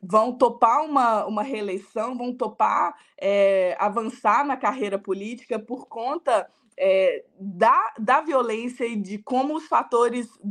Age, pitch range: 20-39, 210-270 Hz